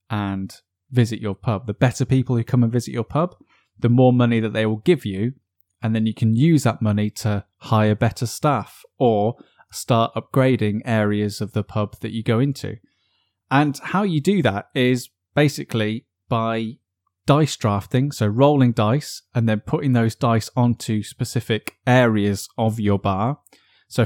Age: 10-29